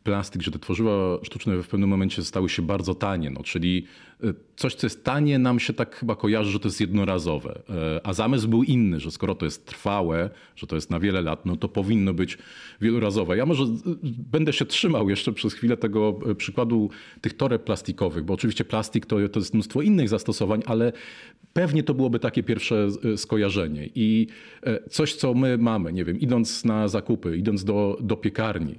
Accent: native